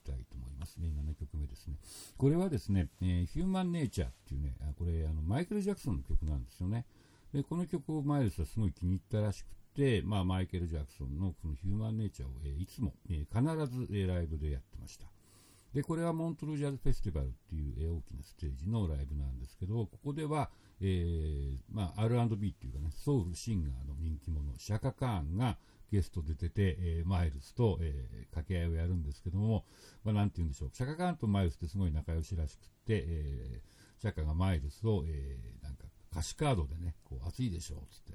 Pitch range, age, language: 80-110 Hz, 60-79, Japanese